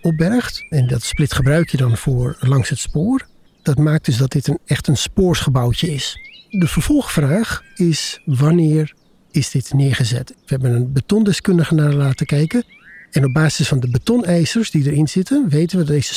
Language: Dutch